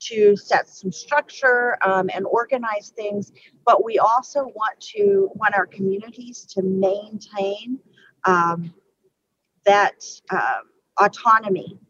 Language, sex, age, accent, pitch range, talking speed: English, female, 40-59, American, 195-245 Hz, 110 wpm